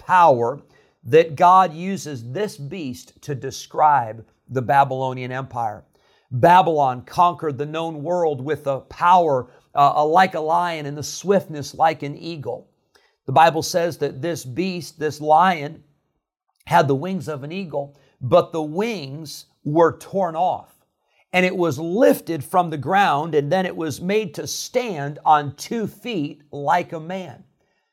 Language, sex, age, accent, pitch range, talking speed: English, male, 50-69, American, 145-185 Hz, 150 wpm